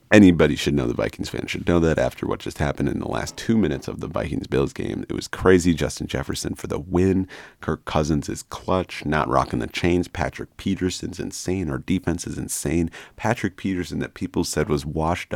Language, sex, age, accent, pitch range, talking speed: English, male, 40-59, American, 80-105 Hz, 205 wpm